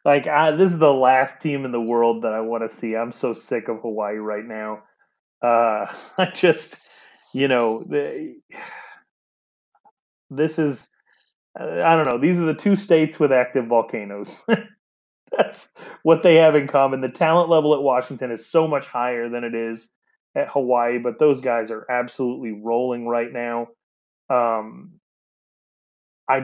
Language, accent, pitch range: English, American, 115-155 Hz